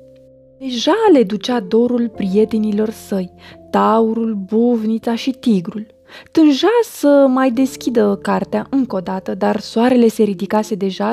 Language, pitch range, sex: Romanian, 205-285 Hz, female